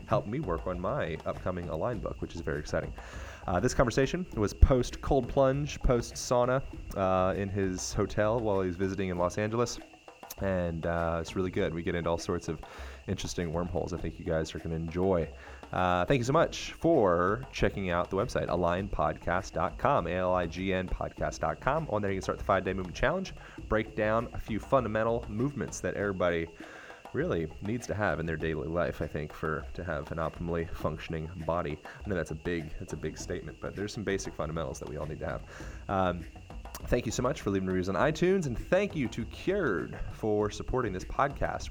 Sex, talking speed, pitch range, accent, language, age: male, 195 wpm, 80-100 Hz, American, English, 30-49